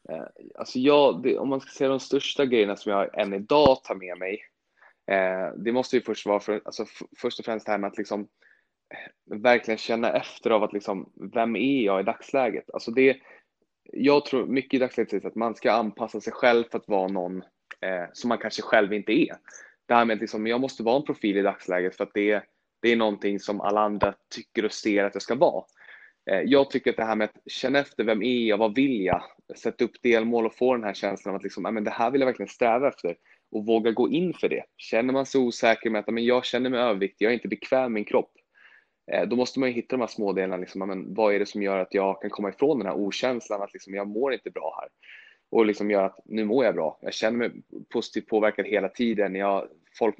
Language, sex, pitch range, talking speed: Swedish, male, 100-120 Hz, 240 wpm